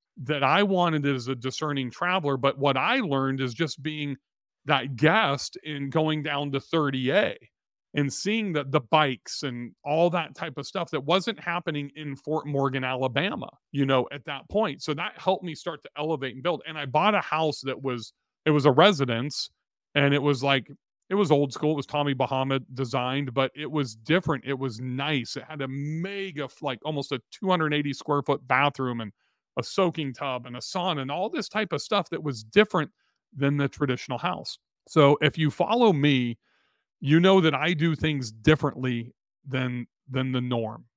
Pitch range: 135-160 Hz